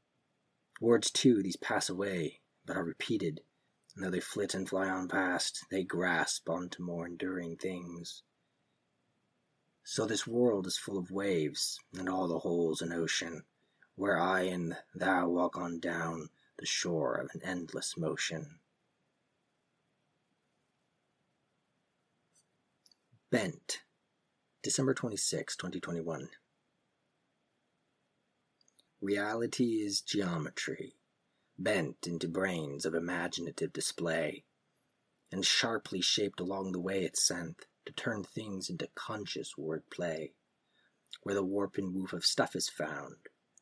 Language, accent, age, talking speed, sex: English, American, 30-49, 115 wpm, male